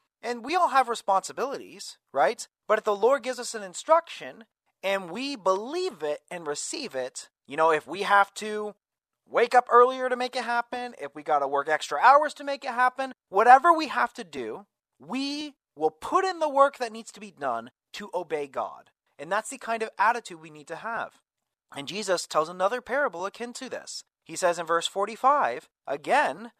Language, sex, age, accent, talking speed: English, male, 30-49, American, 200 wpm